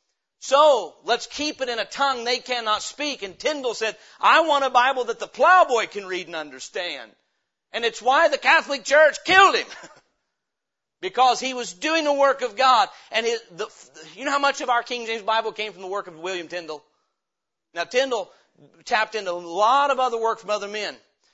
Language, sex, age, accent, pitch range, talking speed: English, male, 40-59, American, 220-290 Hz, 195 wpm